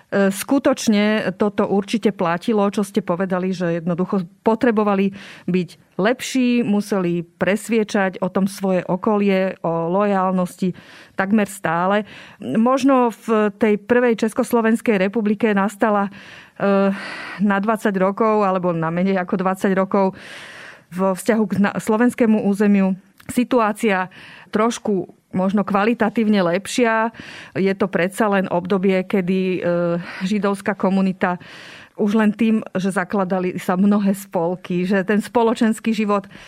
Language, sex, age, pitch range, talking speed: Slovak, female, 30-49, 190-225 Hz, 110 wpm